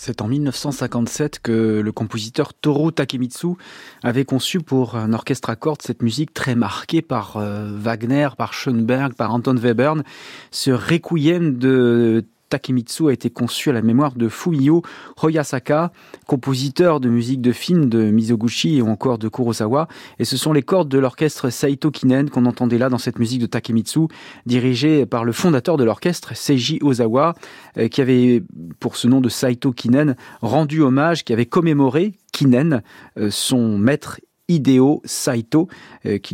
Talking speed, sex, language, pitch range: 155 wpm, male, French, 120-150 Hz